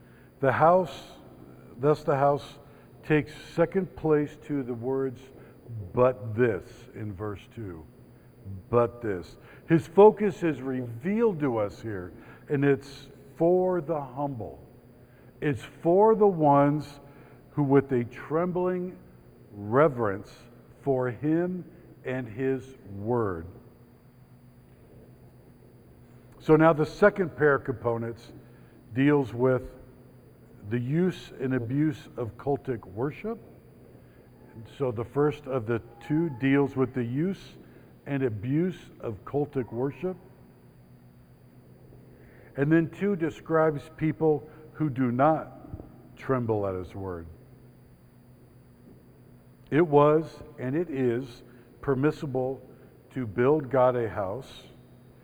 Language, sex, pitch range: English, male, 120-150 Hz